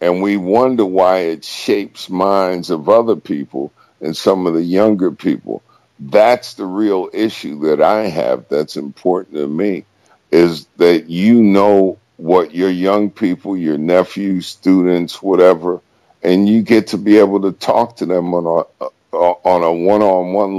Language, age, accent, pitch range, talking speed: English, 60-79, American, 90-105 Hz, 155 wpm